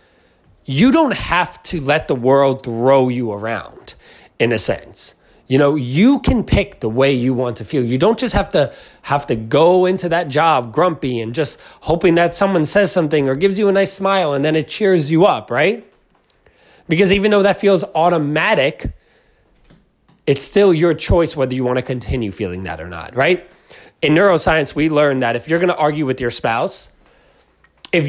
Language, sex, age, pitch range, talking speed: English, male, 30-49, 120-185 Hz, 190 wpm